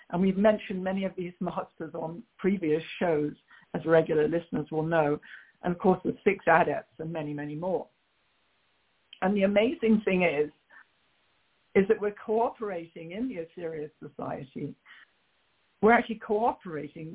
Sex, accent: female, British